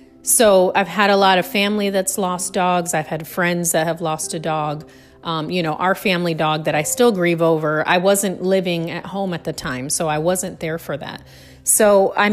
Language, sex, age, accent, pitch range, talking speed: English, female, 30-49, American, 155-195 Hz, 220 wpm